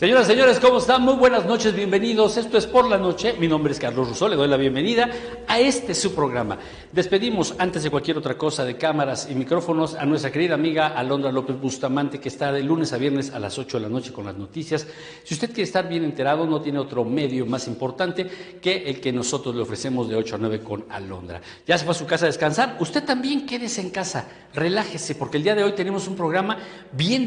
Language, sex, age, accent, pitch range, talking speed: Spanish, male, 50-69, Mexican, 140-200 Hz, 235 wpm